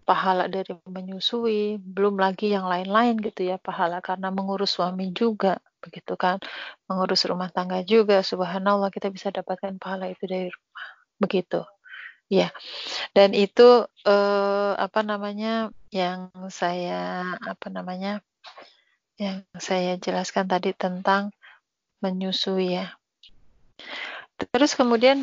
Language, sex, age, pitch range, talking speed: Indonesian, female, 30-49, 190-220 Hz, 115 wpm